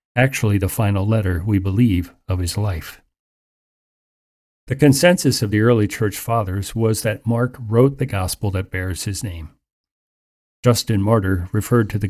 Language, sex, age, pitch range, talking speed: English, male, 40-59, 95-120 Hz, 155 wpm